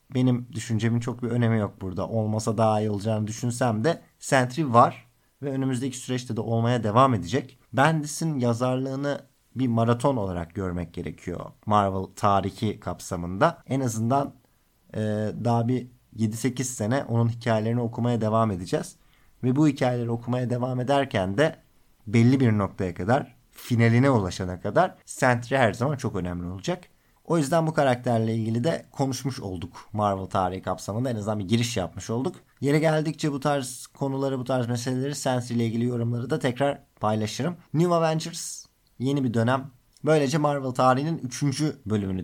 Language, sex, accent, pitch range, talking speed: Turkish, male, native, 110-140 Hz, 150 wpm